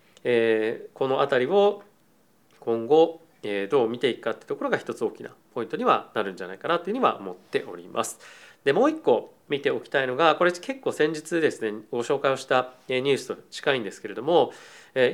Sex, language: male, Japanese